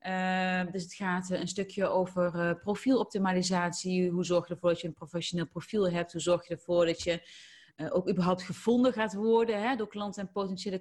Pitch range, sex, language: 175-205 Hz, female, Dutch